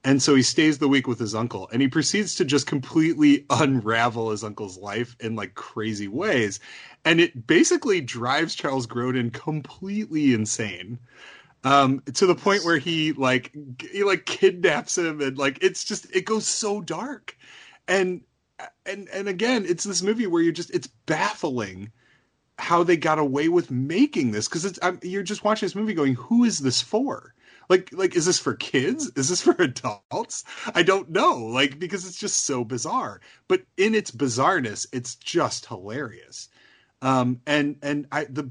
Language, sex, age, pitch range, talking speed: English, male, 30-49, 120-180 Hz, 175 wpm